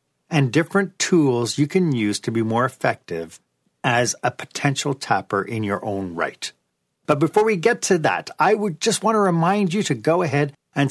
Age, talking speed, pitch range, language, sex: 40-59, 195 wpm, 115-180 Hz, English, male